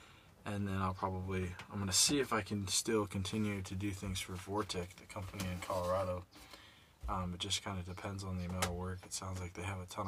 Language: English